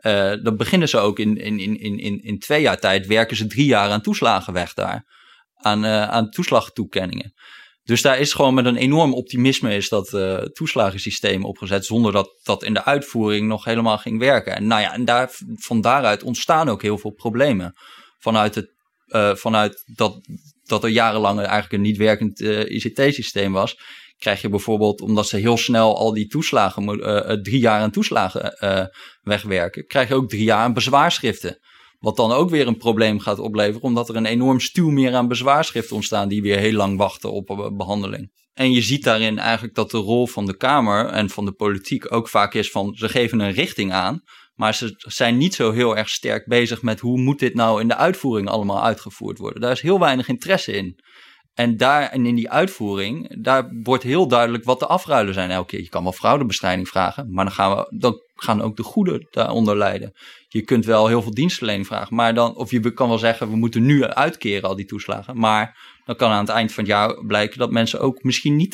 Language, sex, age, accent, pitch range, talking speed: Dutch, male, 20-39, Dutch, 105-125 Hz, 210 wpm